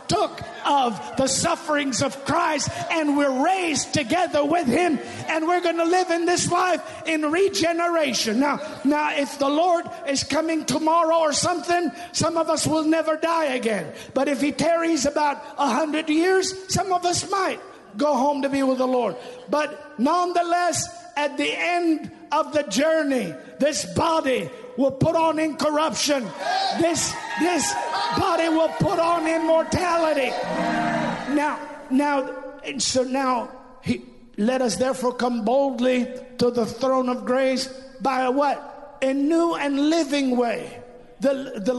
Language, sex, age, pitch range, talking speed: English, male, 50-69, 265-325 Hz, 150 wpm